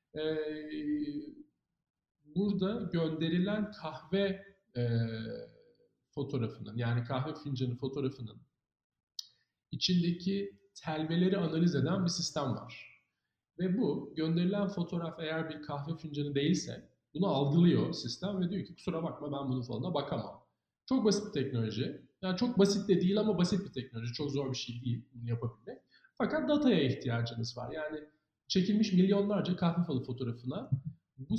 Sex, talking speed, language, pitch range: male, 130 wpm, Turkish, 135-195 Hz